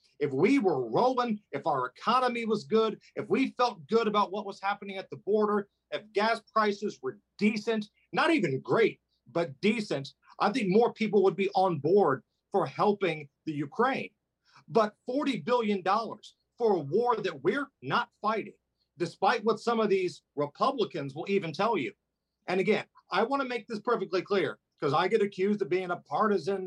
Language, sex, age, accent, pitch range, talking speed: English, male, 40-59, American, 180-220 Hz, 180 wpm